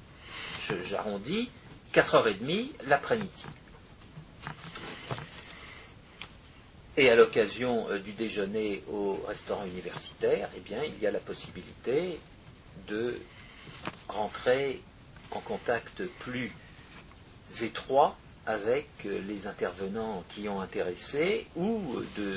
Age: 50-69